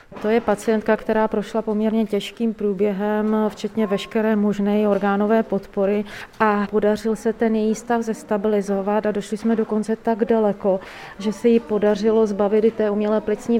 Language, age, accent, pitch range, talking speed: Czech, 30-49, native, 195-215 Hz, 155 wpm